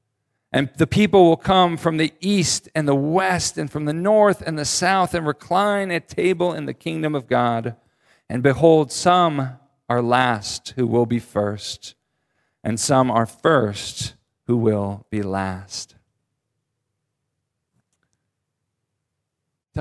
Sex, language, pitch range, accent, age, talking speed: male, English, 120-195 Hz, American, 40-59, 135 wpm